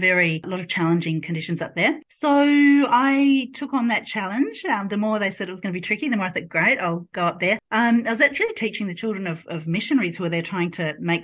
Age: 40-59